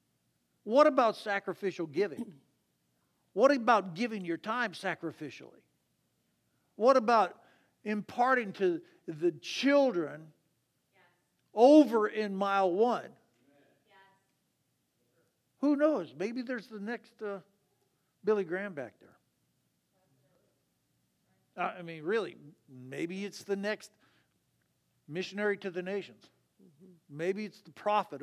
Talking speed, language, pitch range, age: 100 wpm, English, 150-210 Hz, 50-69